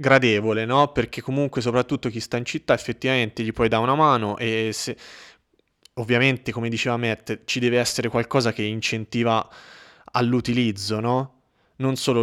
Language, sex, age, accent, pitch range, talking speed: Italian, male, 20-39, native, 110-130 Hz, 150 wpm